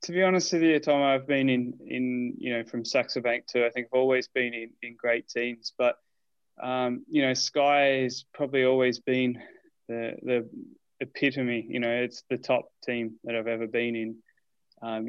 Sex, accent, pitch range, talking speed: male, Australian, 120-130 Hz, 195 wpm